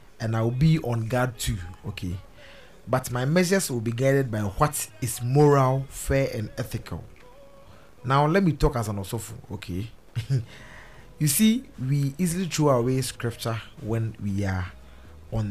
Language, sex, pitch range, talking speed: English, male, 110-140 Hz, 150 wpm